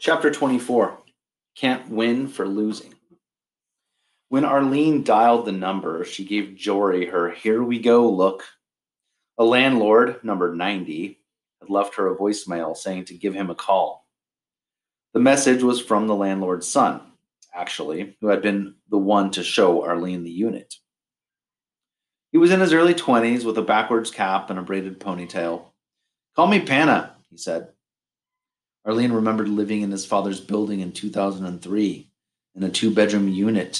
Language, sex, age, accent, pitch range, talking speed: English, male, 30-49, American, 95-110 Hz, 145 wpm